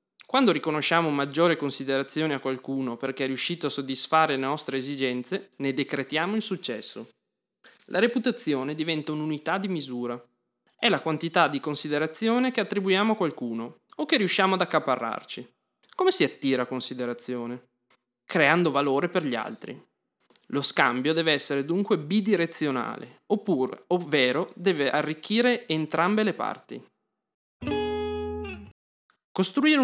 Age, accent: 20-39, native